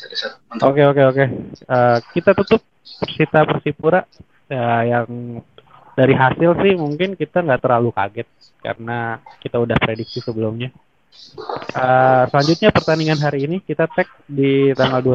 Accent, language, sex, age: native, Indonesian, male, 20-39